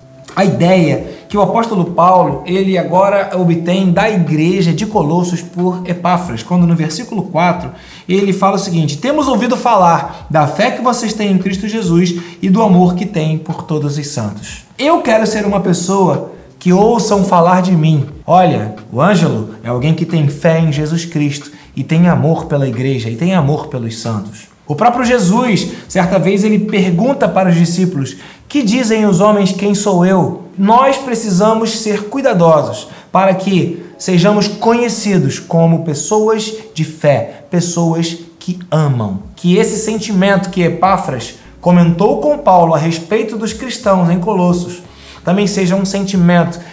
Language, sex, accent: Portuguese, male, Brazilian